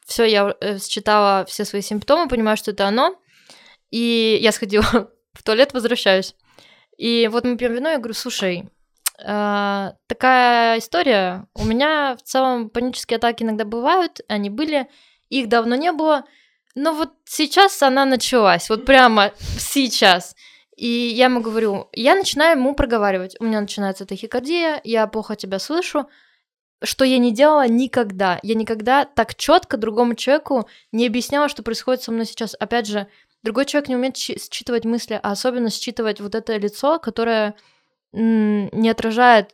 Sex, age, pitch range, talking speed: female, 20-39, 205-255 Hz, 150 wpm